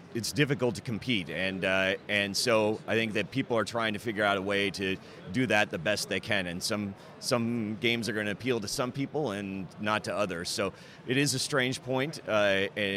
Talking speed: 225 wpm